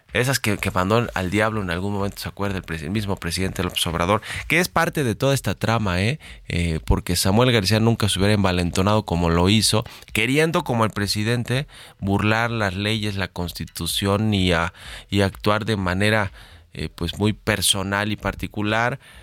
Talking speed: 180 wpm